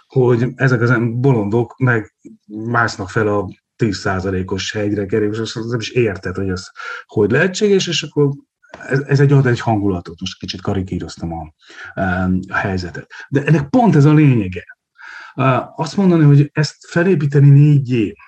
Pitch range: 105-140 Hz